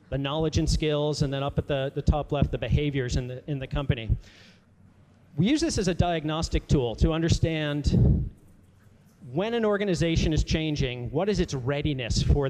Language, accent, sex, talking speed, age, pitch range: Italian, American, male, 185 wpm, 40-59, 125-160 Hz